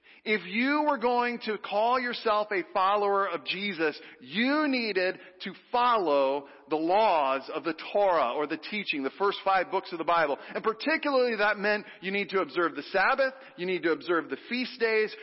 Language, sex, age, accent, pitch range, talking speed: English, male, 40-59, American, 175-230 Hz, 185 wpm